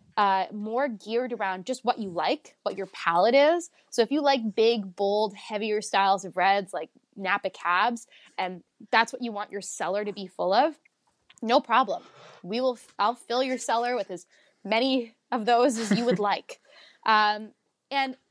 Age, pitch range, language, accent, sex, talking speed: 20-39, 195-240 Hz, English, American, female, 185 wpm